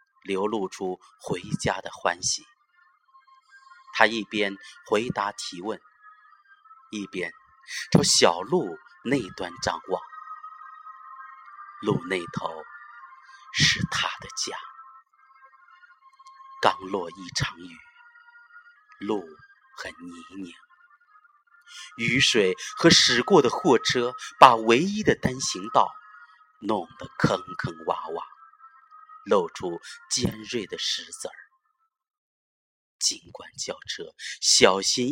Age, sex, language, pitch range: 30-49, male, Chinese, 265-425 Hz